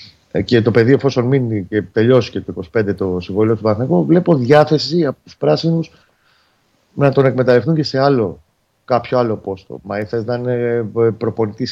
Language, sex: Greek, male